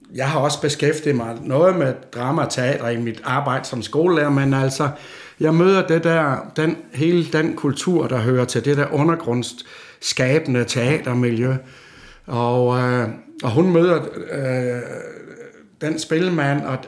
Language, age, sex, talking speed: Danish, 60-79, male, 140 wpm